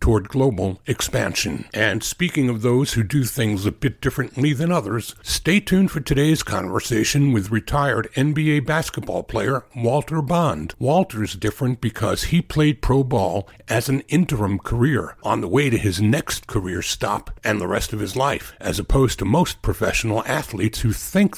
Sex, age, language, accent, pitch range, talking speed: male, 60-79, English, American, 105-140 Hz, 170 wpm